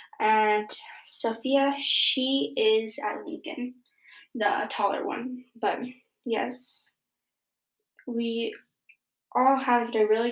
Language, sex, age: English, female, 10-29